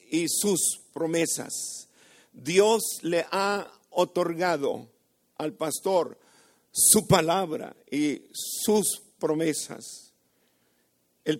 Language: Spanish